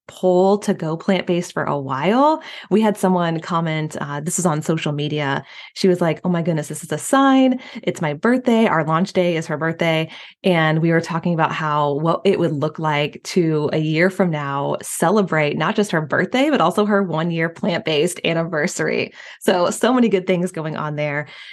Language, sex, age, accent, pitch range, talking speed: English, female, 20-39, American, 155-190 Hz, 200 wpm